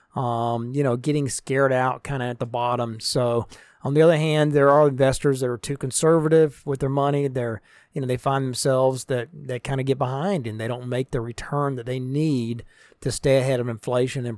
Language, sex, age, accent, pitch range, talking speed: English, male, 40-59, American, 120-150 Hz, 220 wpm